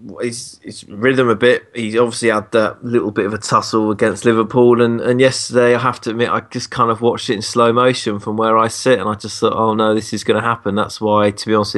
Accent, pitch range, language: British, 105-130 Hz, English